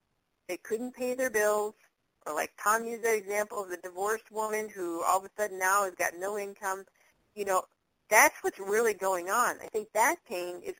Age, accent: 30-49, American